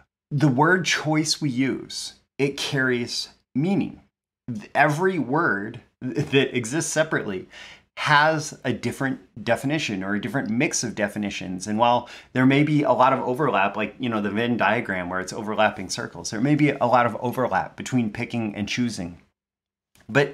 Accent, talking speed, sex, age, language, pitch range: American, 160 wpm, male, 30-49, English, 105-140 Hz